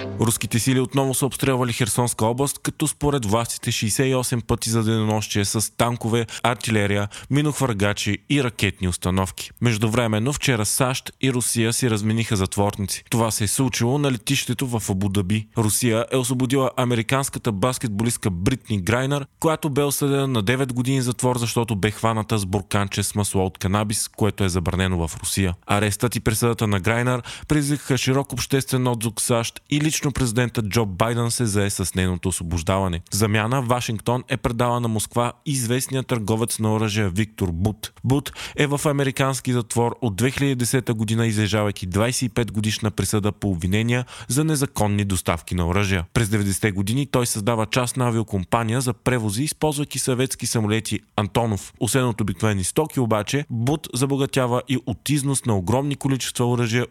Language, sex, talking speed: Bulgarian, male, 150 wpm